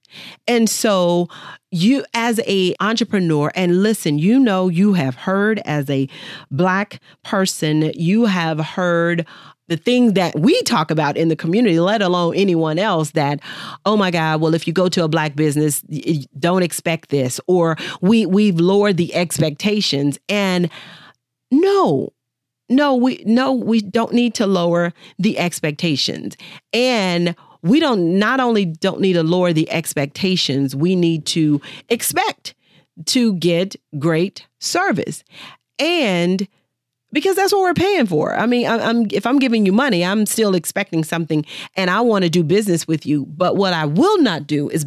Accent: American